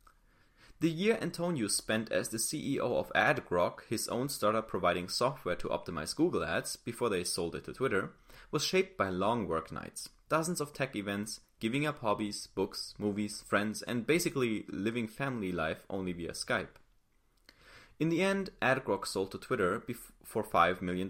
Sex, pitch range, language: male, 100-155 Hz, English